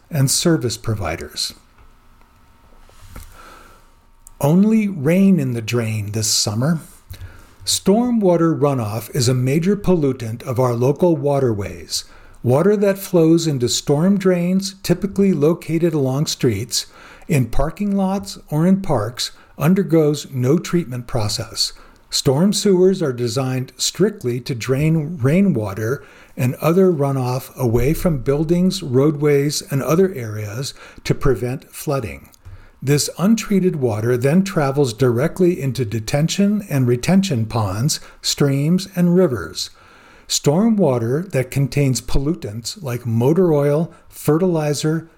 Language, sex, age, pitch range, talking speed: English, male, 50-69, 120-175 Hz, 115 wpm